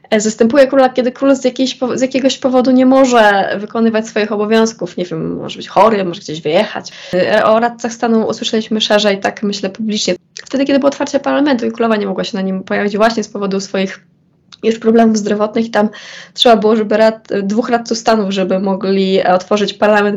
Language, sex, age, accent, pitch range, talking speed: Polish, female, 20-39, native, 205-240 Hz, 185 wpm